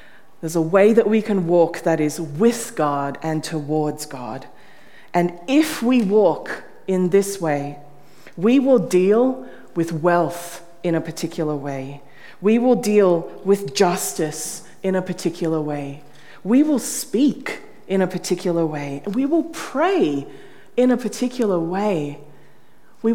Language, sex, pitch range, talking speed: English, female, 150-200 Hz, 140 wpm